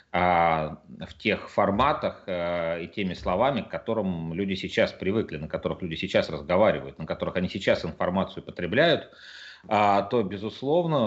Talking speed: 130 wpm